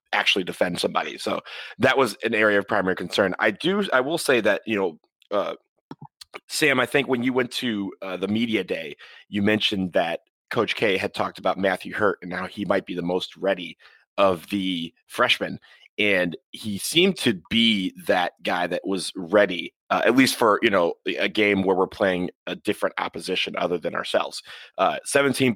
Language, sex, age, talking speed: English, male, 30-49, 190 wpm